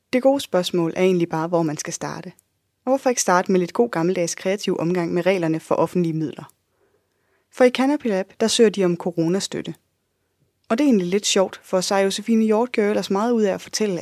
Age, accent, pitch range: 20-39, native, 170-215 Hz